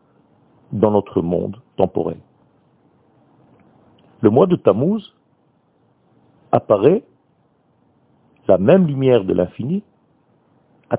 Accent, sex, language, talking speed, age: French, male, French, 80 wpm, 50-69